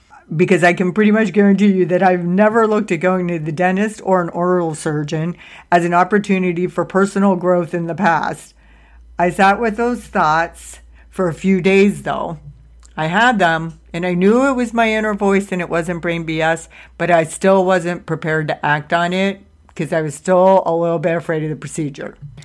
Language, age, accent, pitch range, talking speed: English, 50-69, American, 155-185 Hz, 200 wpm